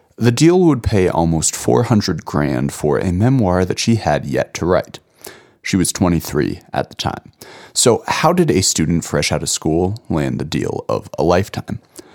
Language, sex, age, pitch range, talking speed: English, male, 30-49, 80-120 Hz, 185 wpm